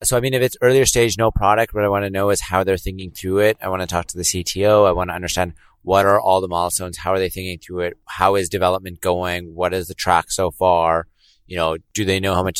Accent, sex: American, male